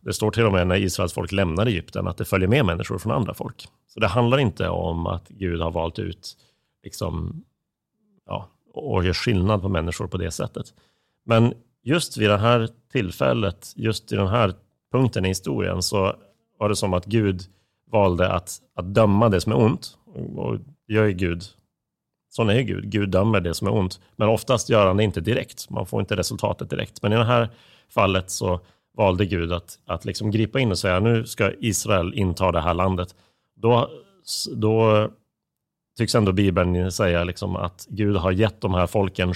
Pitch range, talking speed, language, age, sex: 95-110 Hz, 190 wpm, Swedish, 30-49, male